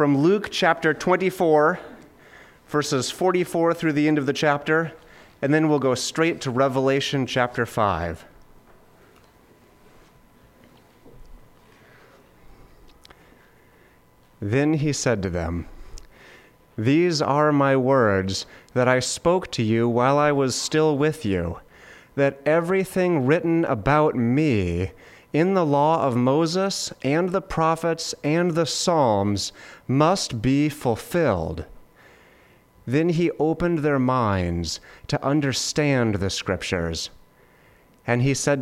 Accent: American